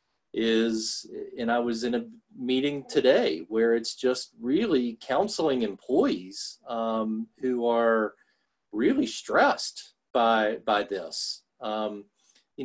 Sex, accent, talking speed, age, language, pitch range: male, American, 115 wpm, 40-59, English, 115-130 Hz